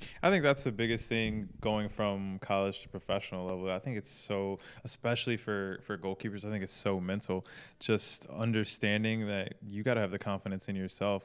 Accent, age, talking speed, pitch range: American, 20-39, 190 wpm, 95-110 Hz